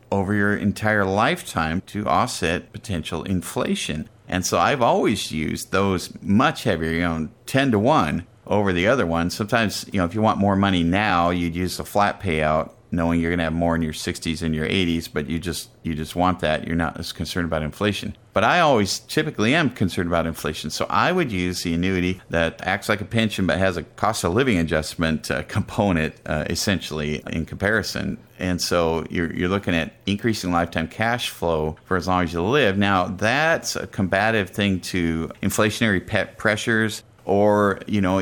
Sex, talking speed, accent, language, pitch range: male, 195 wpm, American, English, 85-100 Hz